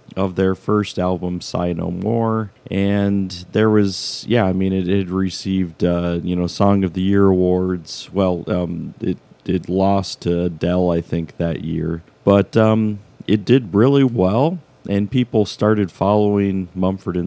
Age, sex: 40-59, male